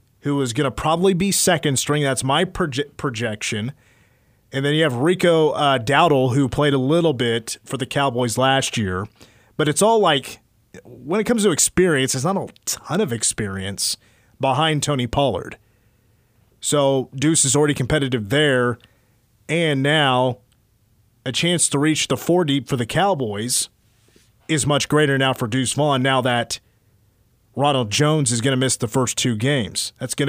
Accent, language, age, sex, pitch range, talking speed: American, English, 30-49, male, 115-150 Hz, 170 wpm